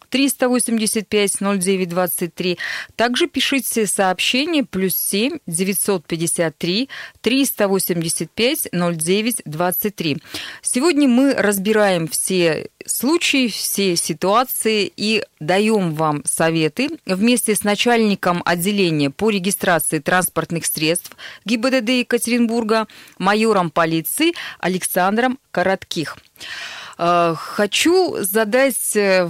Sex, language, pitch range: female, Russian, 175-235 Hz